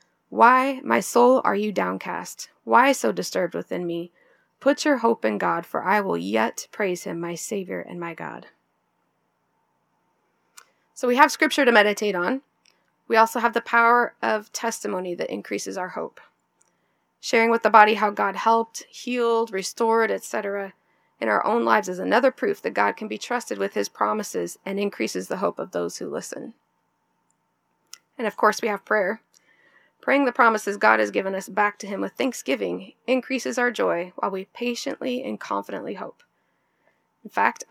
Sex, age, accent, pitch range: female, 20-39, American, 170-245 Hz